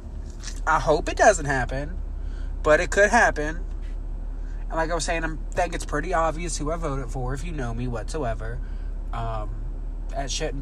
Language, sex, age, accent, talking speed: English, male, 20-39, American, 180 wpm